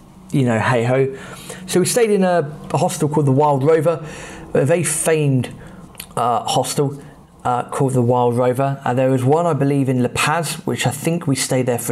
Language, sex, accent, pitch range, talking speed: English, male, British, 130-160 Hz, 205 wpm